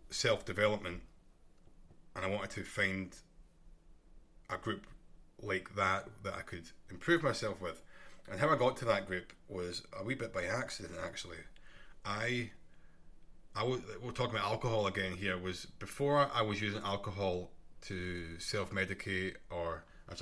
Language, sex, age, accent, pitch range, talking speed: English, male, 20-39, British, 95-110 Hz, 140 wpm